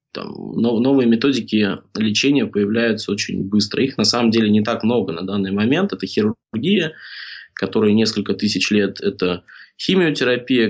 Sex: male